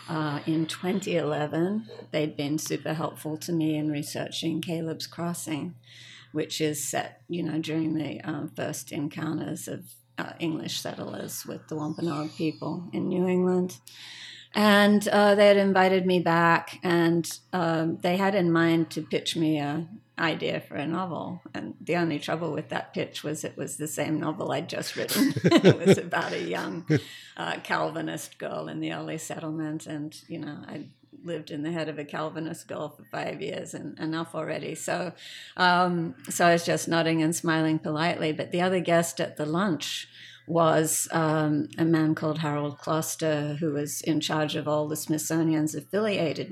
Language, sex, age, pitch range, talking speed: English, female, 50-69, 150-170 Hz, 175 wpm